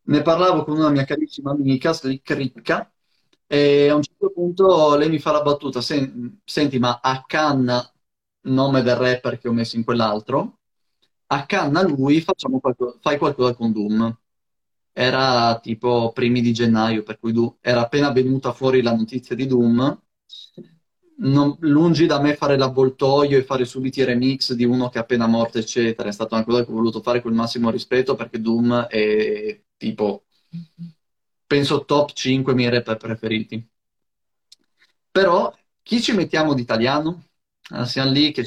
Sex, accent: male, native